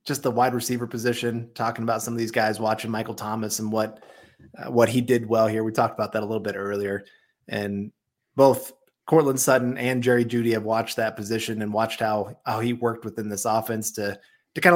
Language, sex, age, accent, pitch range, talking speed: English, male, 30-49, American, 110-135 Hz, 215 wpm